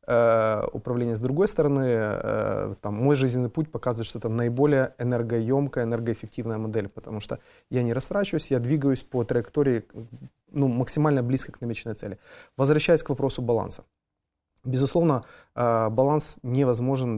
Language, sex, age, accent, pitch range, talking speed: Ukrainian, male, 20-39, native, 115-135 Hz, 130 wpm